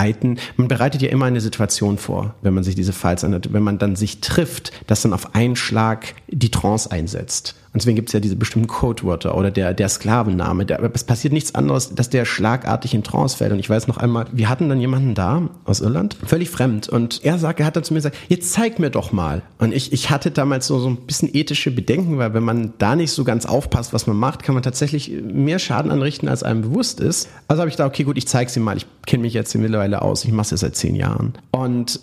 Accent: German